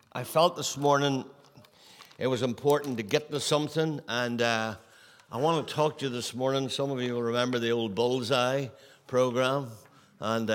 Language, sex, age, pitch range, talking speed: English, male, 60-79, 120-145 Hz, 175 wpm